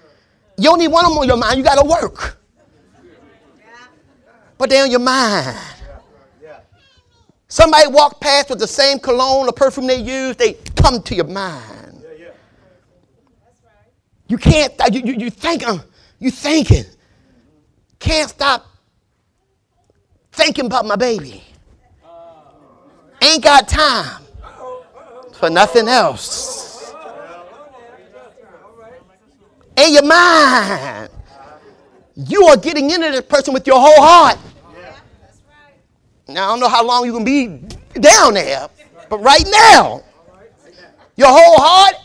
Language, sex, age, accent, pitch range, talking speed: English, male, 30-49, American, 240-310 Hz, 125 wpm